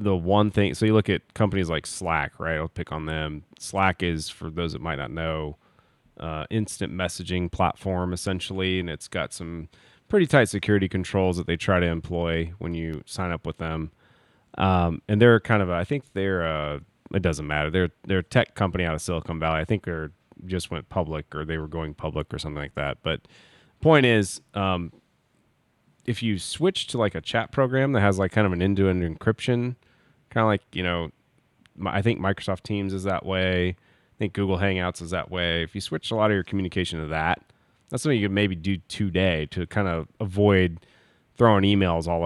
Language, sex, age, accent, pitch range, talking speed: English, male, 30-49, American, 85-105 Hz, 210 wpm